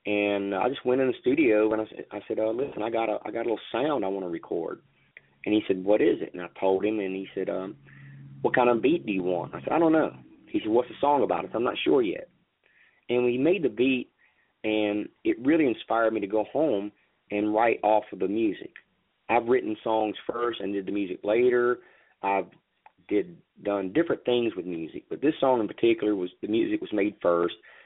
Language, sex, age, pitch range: English, male, 30-49, 100-130 Hz